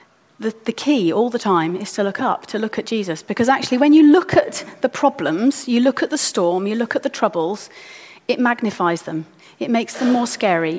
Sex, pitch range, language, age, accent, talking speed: female, 200-265 Hz, English, 30-49, British, 215 wpm